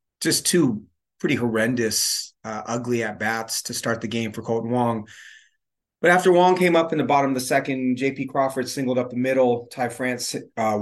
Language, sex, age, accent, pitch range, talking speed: English, male, 30-49, American, 115-135 Hz, 195 wpm